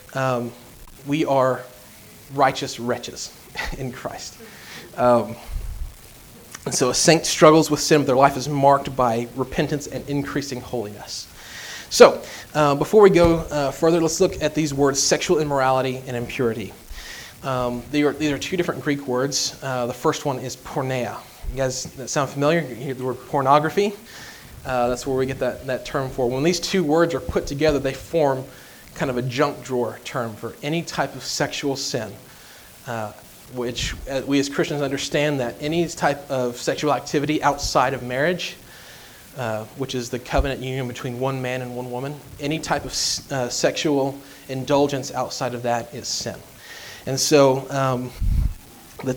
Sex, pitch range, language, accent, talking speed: male, 125-150 Hz, English, American, 165 wpm